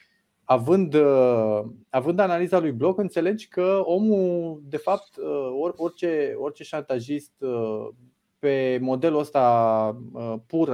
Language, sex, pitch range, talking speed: Romanian, male, 125-175 Hz, 95 wpm